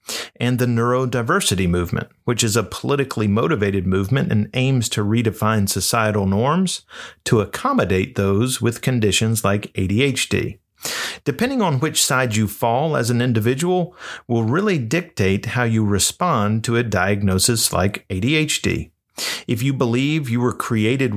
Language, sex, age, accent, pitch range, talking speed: English, male, 50-69, American, 105-130 Hz, 140 wpm